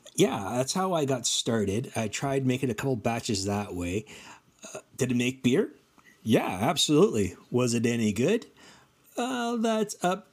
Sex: male